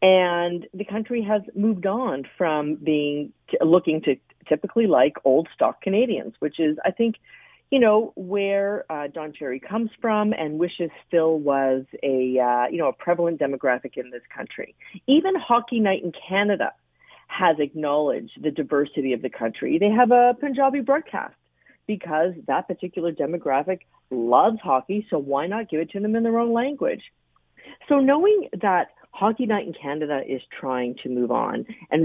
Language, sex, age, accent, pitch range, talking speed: English, female, 40-59, American, 150-230 Hz, 165 wpm